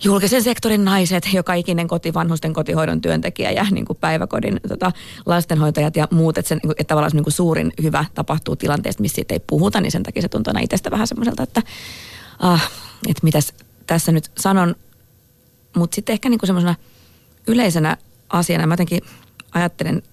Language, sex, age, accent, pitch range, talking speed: Finnish, female, 30-49, native, 150-180 Hz, 165 wpm